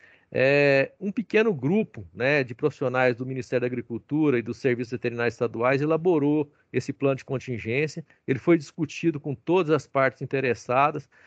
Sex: male